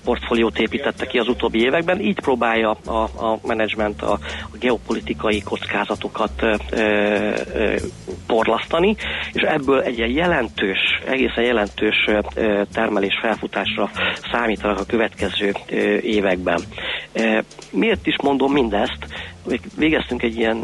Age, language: 40-59, Hungarian